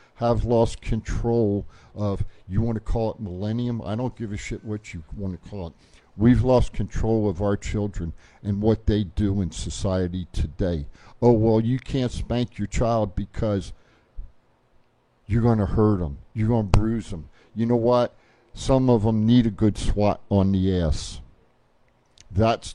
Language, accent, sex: English, American, male